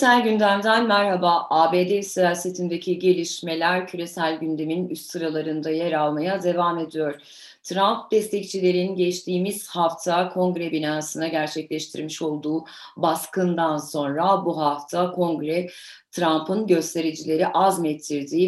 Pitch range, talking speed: 150-180 Hz, 95 wpm